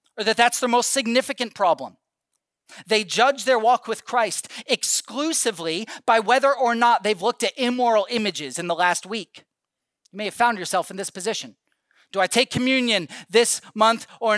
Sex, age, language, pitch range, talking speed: male, 40-59, English, 145-245 Hz, 175 wpm